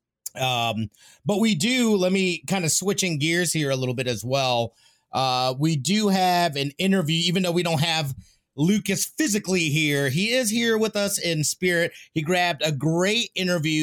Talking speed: 180 wpm